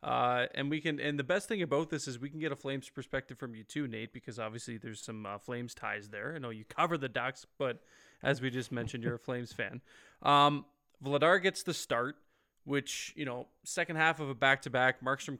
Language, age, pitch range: English, 20-39, 125-150 Hz